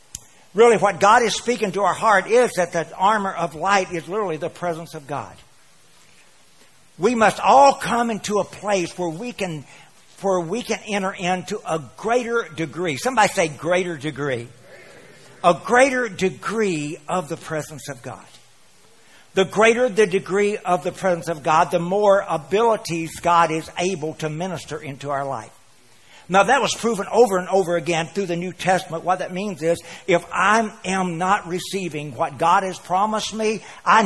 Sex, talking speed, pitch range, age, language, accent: male, 165 wpm, 160-200 Hz, 60-79, English, American